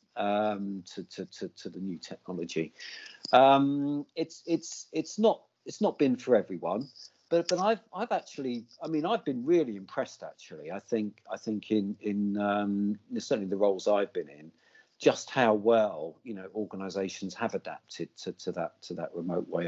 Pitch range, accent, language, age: 100-160 Hz, British, English, 50-69